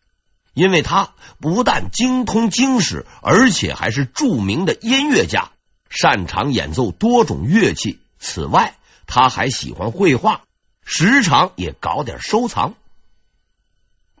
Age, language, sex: 50-69, Chinese, male